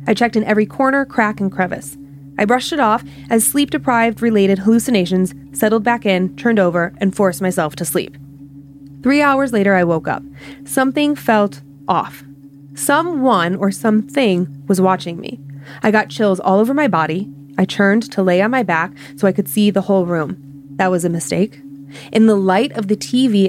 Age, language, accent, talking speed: 20-39, English, American, 180 wpm